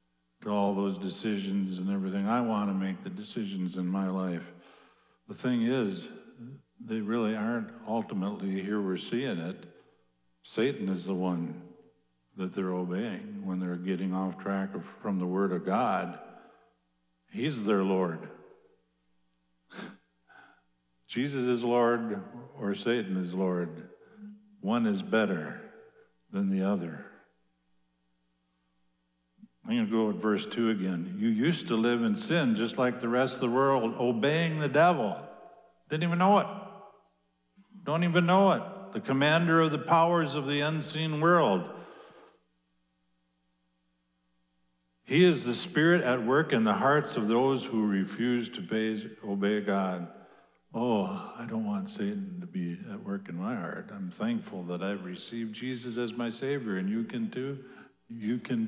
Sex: male